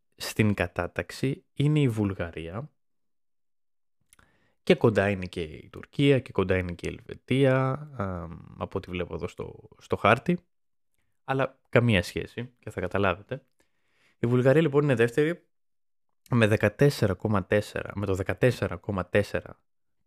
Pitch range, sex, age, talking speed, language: 90-125 Hz, male, 20-39, 120 wpm, Greek